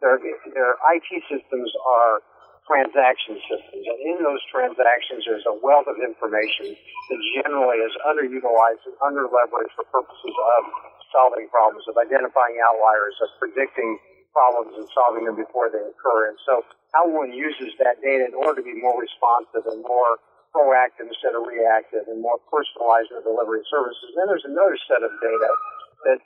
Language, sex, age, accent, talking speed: English, male, 50-69, American, 160 wpm